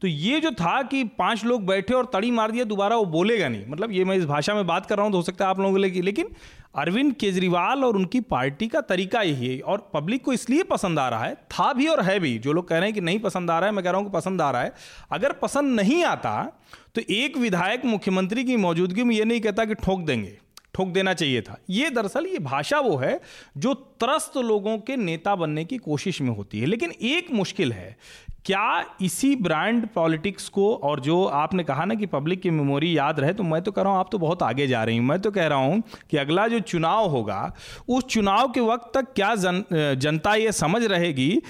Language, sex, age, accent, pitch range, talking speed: Hindi, male, 40-59, native, 170-235 Hz, 245 wpm